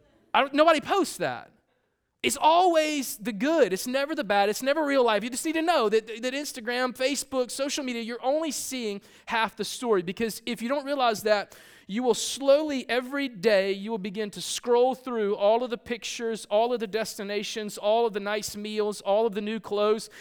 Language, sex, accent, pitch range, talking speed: English, male, American, 195-260 Hz, 200 wpm